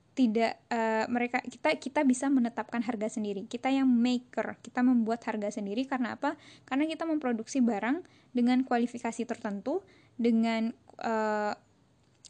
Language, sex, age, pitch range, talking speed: Indonesian, female, 10-29, 220-270 Hz, 130 wpm